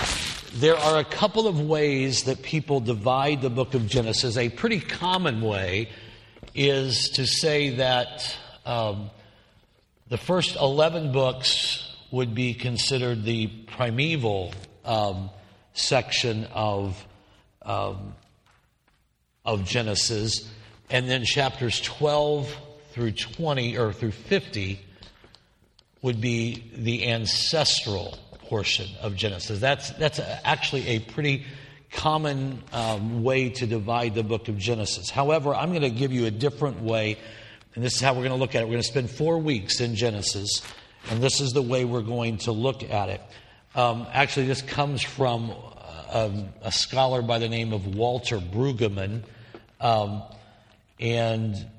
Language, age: English, 50-69